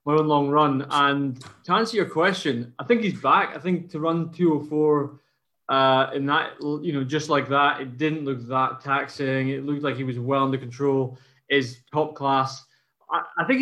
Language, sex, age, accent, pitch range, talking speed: English, male, 20-39, British, 135-155 Hz, 200 wpm